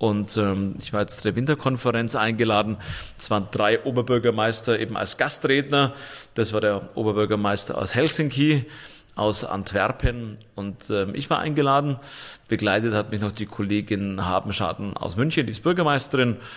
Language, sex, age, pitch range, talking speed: German, male, 30-49, 105-130 Hz, 145 wpm